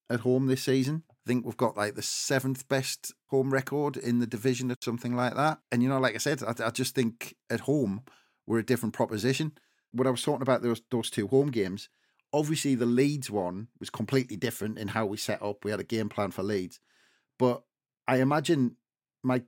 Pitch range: 110-130 Hz